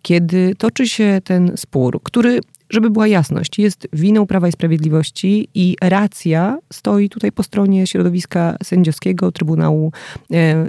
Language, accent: Polish, native